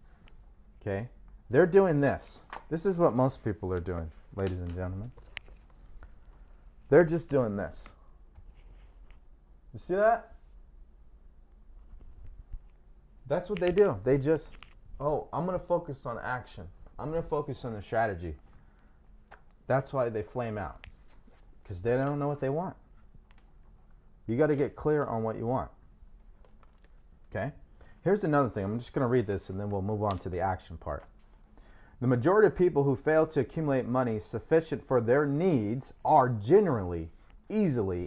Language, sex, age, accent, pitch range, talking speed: English, male, 30-49, American, 90-145 Hz, 155 wpm